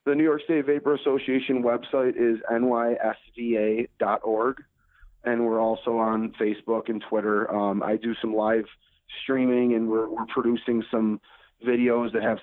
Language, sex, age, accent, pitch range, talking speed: English, male, 30-49, American, 110-120 Hz, 145 wpm